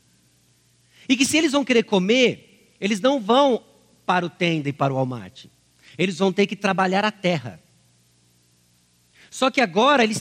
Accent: Brazilian